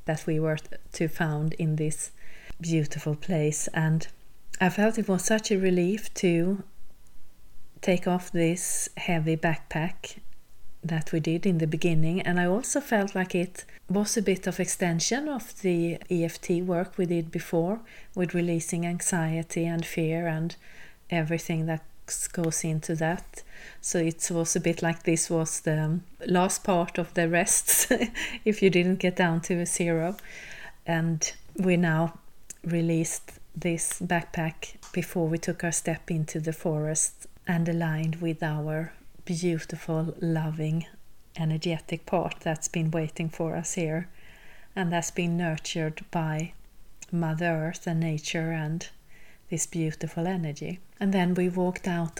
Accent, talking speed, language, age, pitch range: Swedish, 145 wpm, English, 40-59, 160-180 Hz